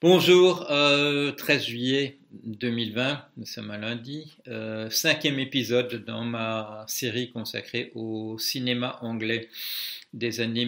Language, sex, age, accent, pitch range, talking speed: French, male, 50-69, French, 110-125 Hz, 120 wpm